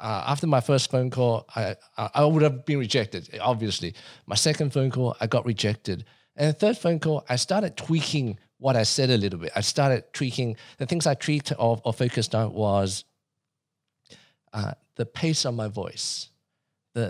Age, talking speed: 50-69, 185 wpm